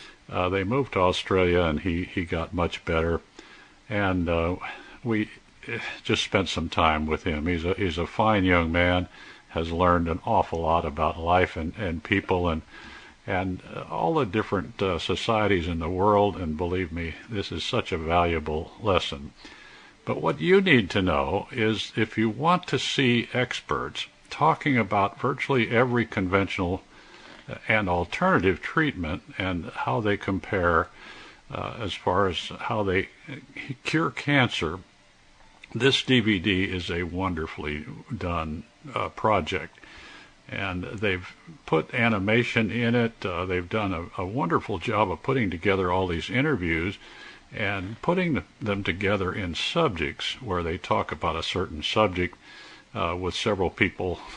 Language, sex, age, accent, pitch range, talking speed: English, male, 50-69, American, 85-110 Hz, 145 wpm